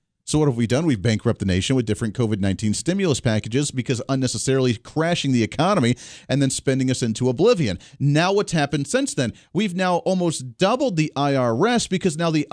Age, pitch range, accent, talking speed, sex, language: 40-59, 120-160 Hz, American, 190 wpm, male, English